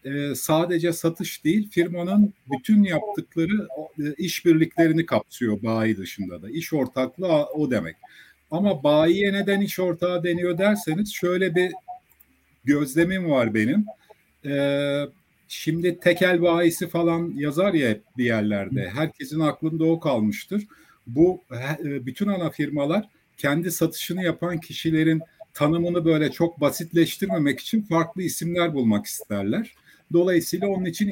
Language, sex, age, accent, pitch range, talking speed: Turkish, male, 50-69, native, 145-185 Hz, 115 wpm